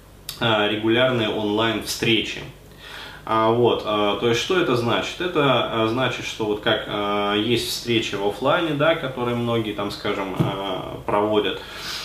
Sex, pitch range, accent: male, 100-120 Hz, native